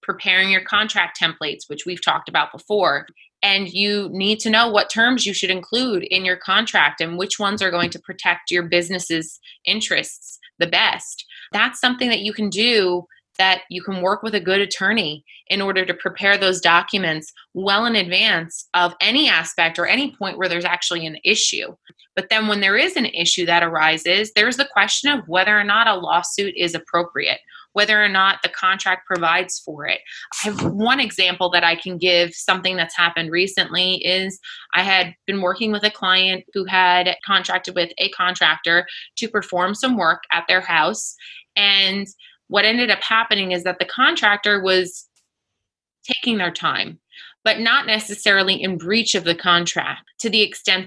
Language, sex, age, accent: English, female, 20-39, American